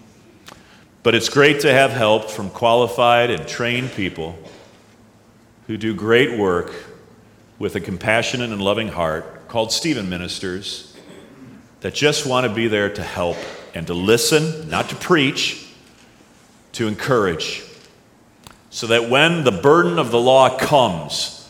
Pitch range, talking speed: 115-150 Hz, 135 wpm